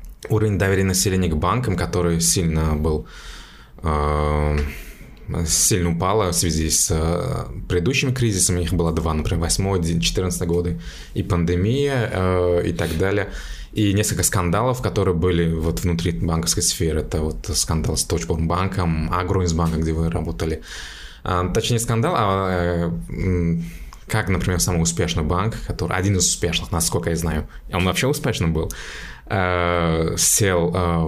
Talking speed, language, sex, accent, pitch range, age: 125 wpm, Russian, male, native, 80-95 Hz, 20-39